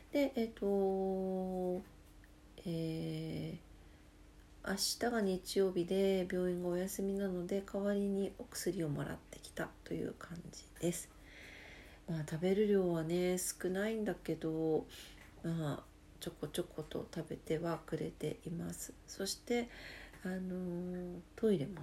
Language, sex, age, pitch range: Japanese, female, 40-59, 155-195 Hz